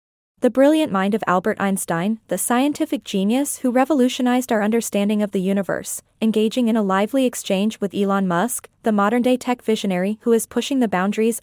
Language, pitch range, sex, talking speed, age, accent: English, 200-245 Hz, female, 175 wpm, 20-39, American